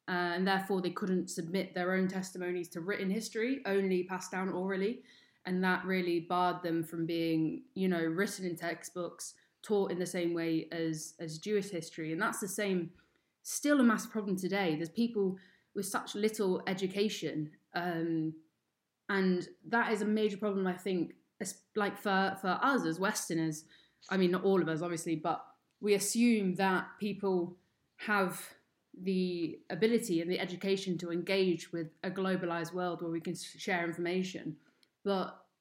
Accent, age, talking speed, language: British, 20-39, 165 wpm, English